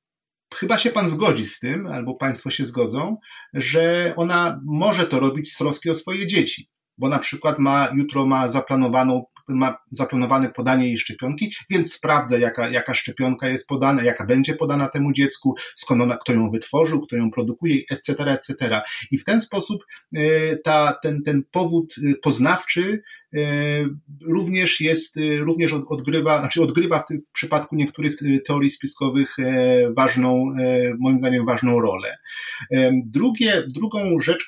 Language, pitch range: Polish, 130-165 Hz